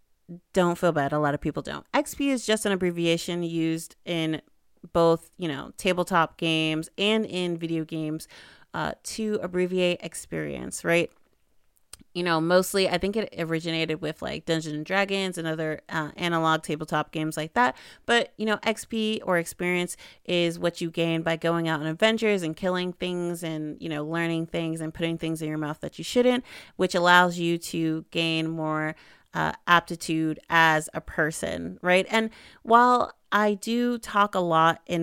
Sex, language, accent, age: female, English, American, 30-49